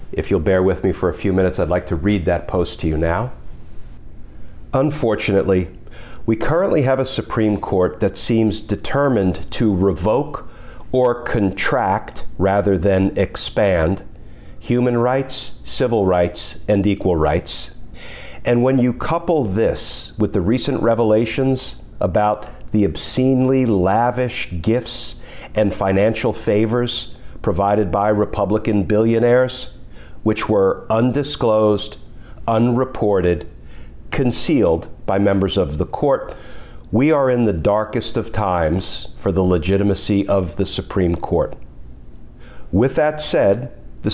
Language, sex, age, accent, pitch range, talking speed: English, male, 50-69, American, 95-120 Hz, 125 wpm